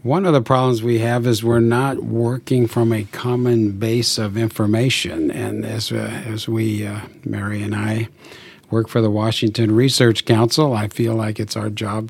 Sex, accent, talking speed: male, American, 185 wpm